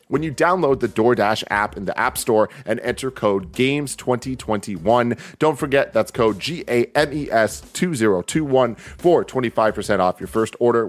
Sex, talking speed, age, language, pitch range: male, 170 wpm, 30-49, English, 105-140 Hz